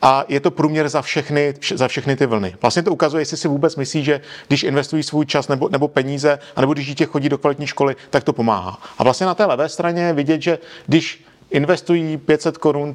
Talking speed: 220 wpm